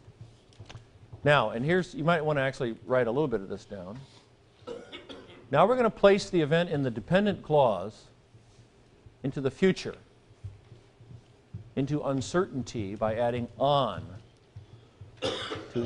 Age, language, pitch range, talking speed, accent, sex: 50-69, English, 120-160 Hz, 130 wpm, American, male